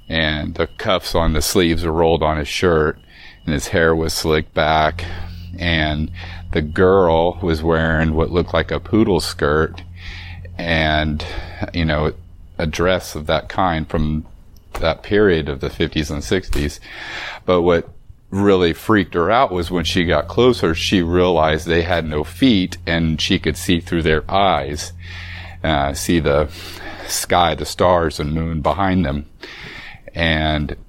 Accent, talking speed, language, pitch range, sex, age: American, 155 wpm, English, 80-90 Hz, male, 40-59